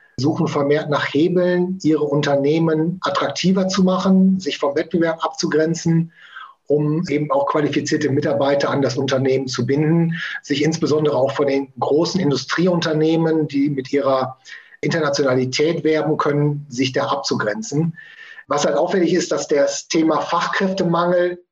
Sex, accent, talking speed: male, German, 130 wpm